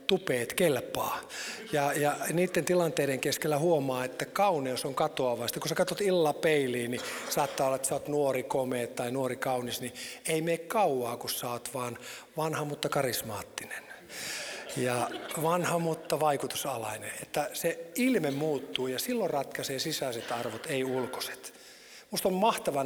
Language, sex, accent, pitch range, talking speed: Finnish, male, native, 125-165 Hz, 150 wpm